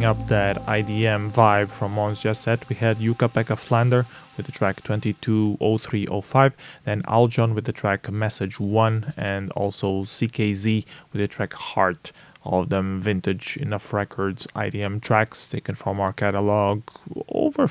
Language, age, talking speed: English, 20-39, 150 wpm